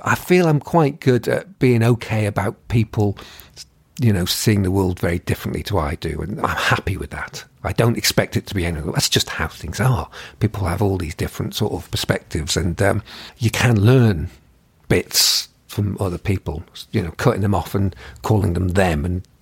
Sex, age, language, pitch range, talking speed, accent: male, 50-69, English, 85-105 Hz, 200 wpm, British